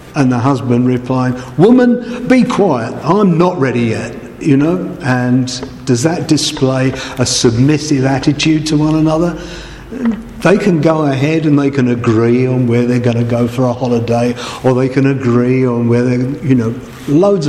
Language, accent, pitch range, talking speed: English, British, 115-140 Hz, 170 wpm